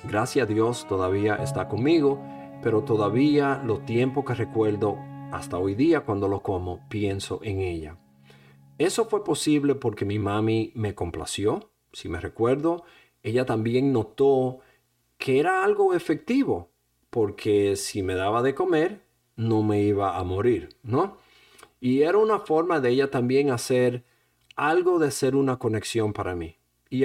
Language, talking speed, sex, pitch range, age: English, 150 wpm, male, 100-135 Hz, 50-69